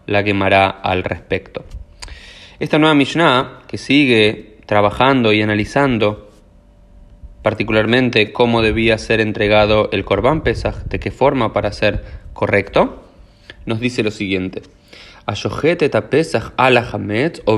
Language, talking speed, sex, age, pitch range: Spanish, 110 wpm, male, 20-39, 100-125 Hz